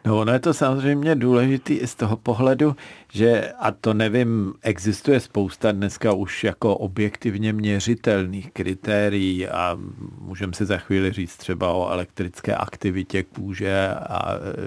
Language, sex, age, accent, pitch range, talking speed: Czech, male, 50-69, native, 100-120 Hz, 140 wpm